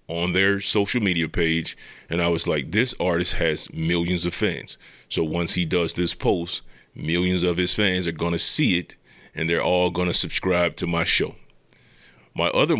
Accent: American